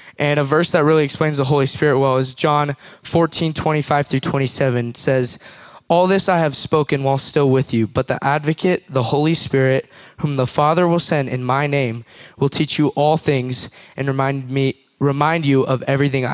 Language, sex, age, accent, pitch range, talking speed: English, male, 20-39, American, 130-150 Hz, 200 wpm